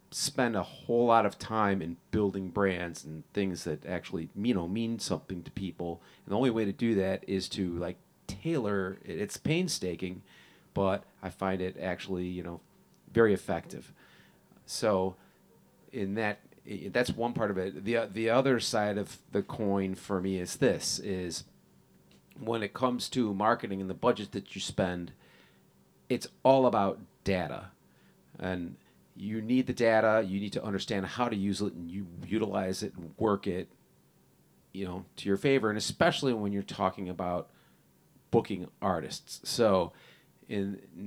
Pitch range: 90-110 Hz